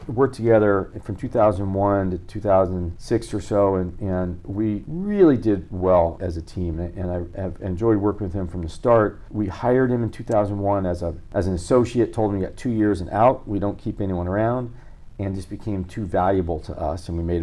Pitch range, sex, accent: 90-115 Hz, male, American